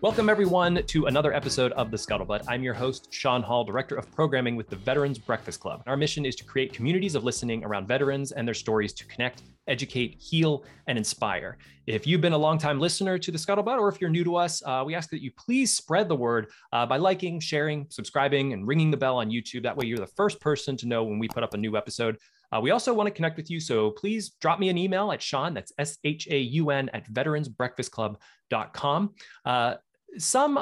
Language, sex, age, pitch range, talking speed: English, male, 20-39, 120-165 Hz, 215 wpm